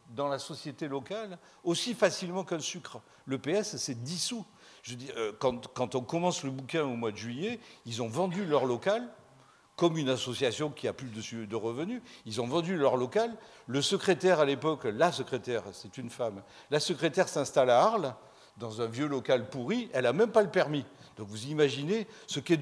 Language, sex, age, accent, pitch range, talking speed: French, male, 50-69, French, 125-190 Hz, 190 wpm